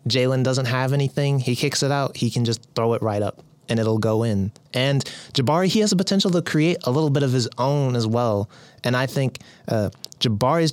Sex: male